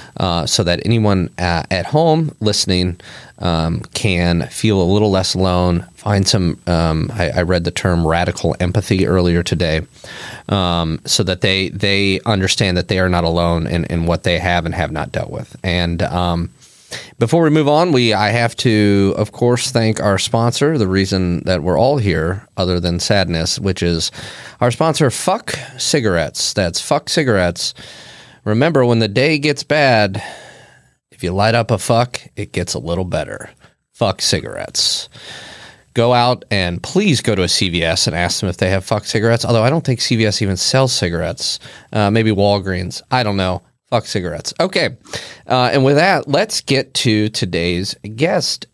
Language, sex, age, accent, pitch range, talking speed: English, male, 30-49, American, 90-120 Hz, 175 wpm